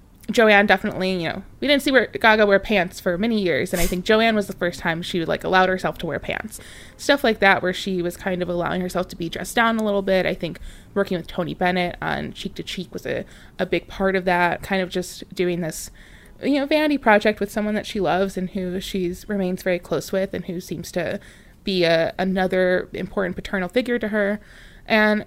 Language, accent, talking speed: English, American, 235 wpm